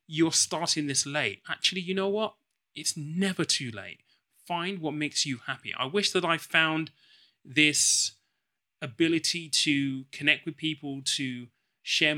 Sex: male